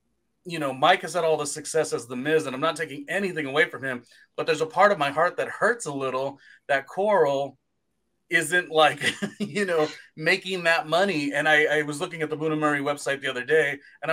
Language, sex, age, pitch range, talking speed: English, male, 30-49, 145-210 Hz, 225 wpm